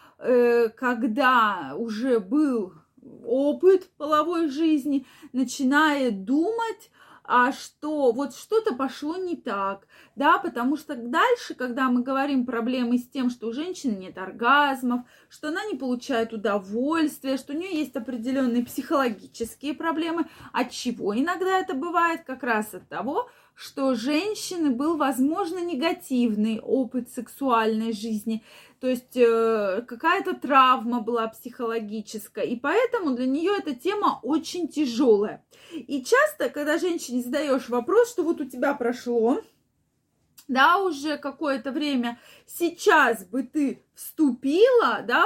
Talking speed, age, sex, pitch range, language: 125 wpm, 20-39, female, 240-315 Hz, Russian